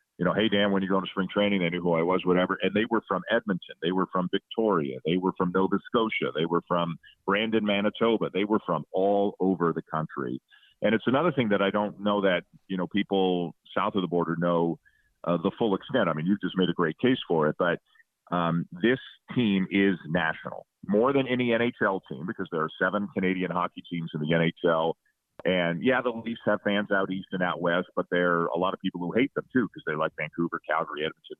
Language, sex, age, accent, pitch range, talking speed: English, male, 40-59, American, 90-105 Hz, 235 wpm